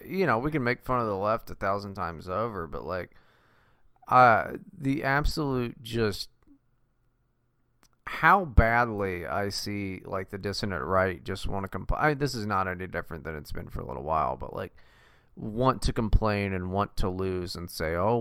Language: English